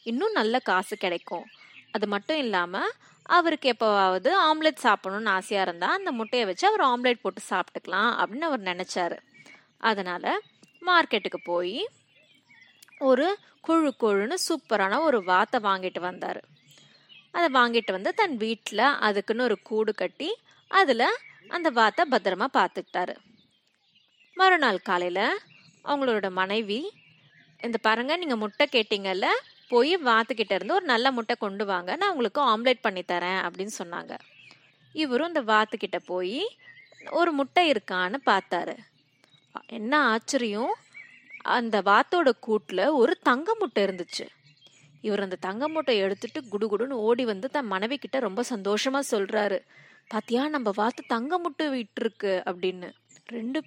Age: 20-39